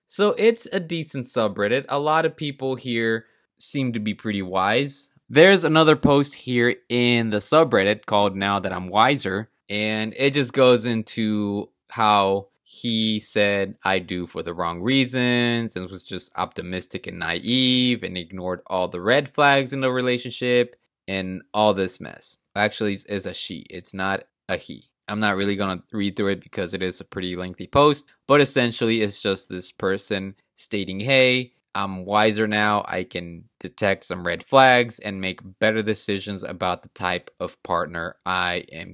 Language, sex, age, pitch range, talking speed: English, male, 20-39, 95-130 Hz, 170 wpm